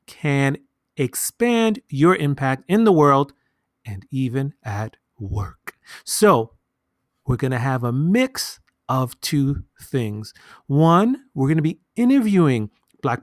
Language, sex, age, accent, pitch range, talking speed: English, male, 30-49, American, 120-155 Hz, 120 wpm